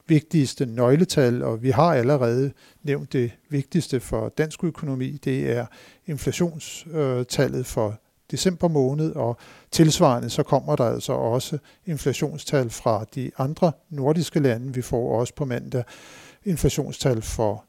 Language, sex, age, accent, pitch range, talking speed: Danish, male, 60-79, native, 125-150 Hz, 130 wpm